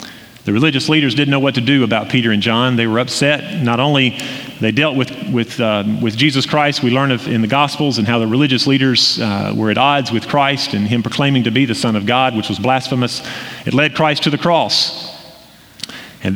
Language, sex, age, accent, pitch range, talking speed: English, male, 40-59, American, 115-145 Hz, 225 wpm